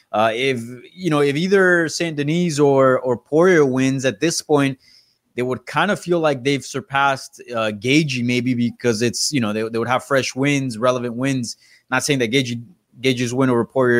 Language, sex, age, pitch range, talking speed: English, male, 20-39, 120-150 Hz, 195 wpm